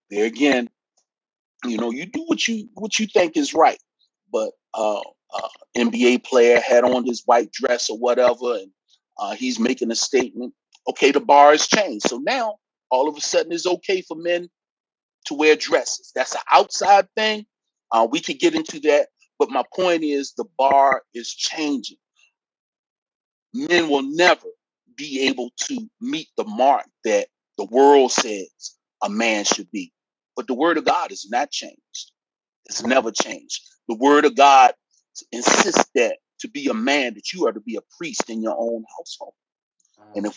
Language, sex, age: English, male, 40-59